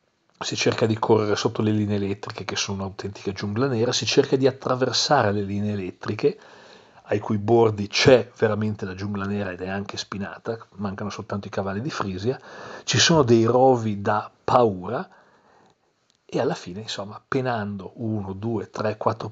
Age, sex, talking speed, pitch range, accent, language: 40-59, male, 165 wpm, 100-120 Hz, native, Italian